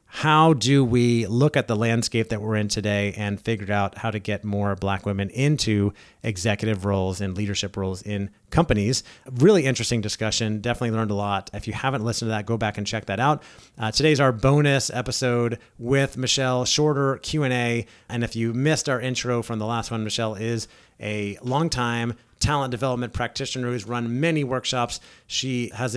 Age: 30-49